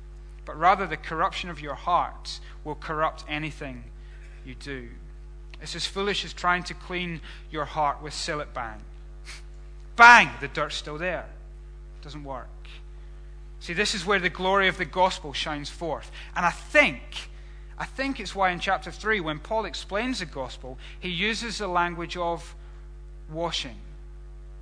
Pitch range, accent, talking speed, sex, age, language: 145-185 Hz, British, 155 wpm, male, 30-49, English